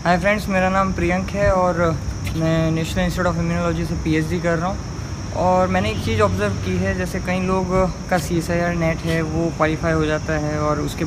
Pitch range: 150-185 Hz